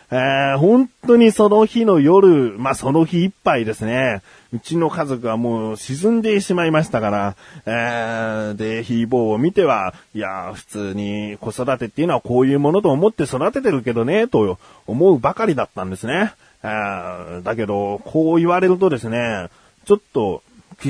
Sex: male